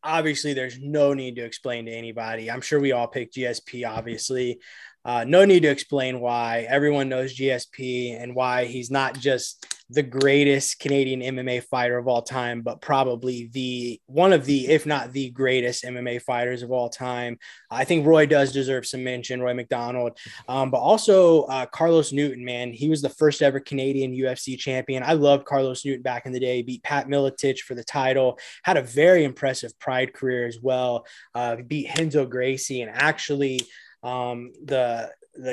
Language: English